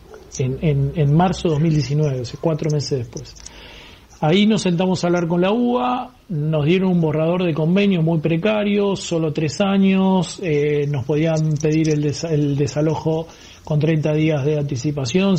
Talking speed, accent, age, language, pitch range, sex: 150 wpm, Argentinian, 40-59, Spanish, 150-195 Hz, male